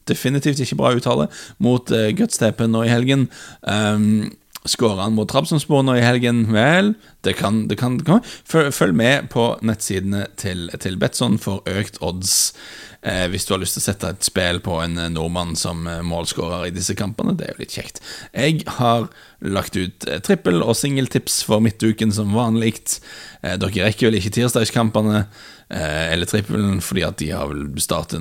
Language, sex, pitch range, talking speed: English, male, 95-120 Hz, 180 wpm